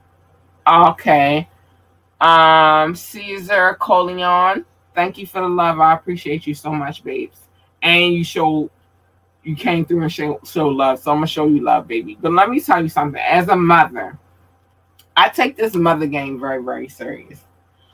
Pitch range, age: 130-175 Hz, 20-39